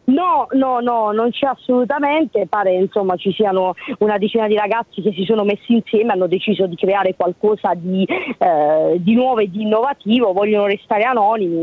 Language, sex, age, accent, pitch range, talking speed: Italian, female, 30-49, native, 200-240 Hz, 175 wpm